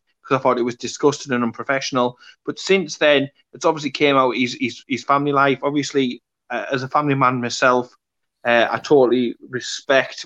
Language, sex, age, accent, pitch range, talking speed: English, male, 20-39, British, 120-140 Hz, 180 wpm